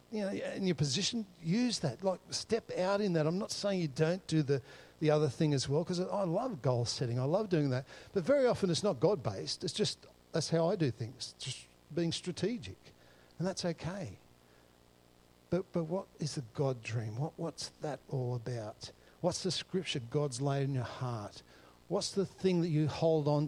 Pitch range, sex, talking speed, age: 125-170 Hz, male, 200 wpm, 60-79